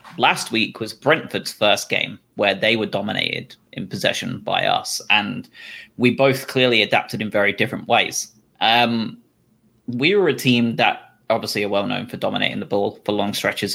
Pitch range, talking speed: 110-130 Hz, 170 wpm